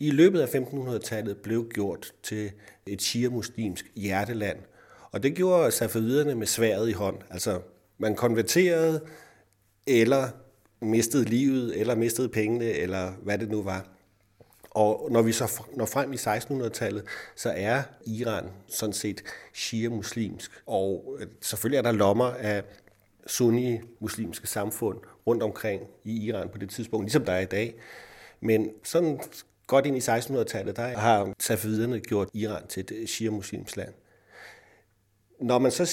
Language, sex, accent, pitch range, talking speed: Danish, male, native, 105-125 Hz, 140 wpm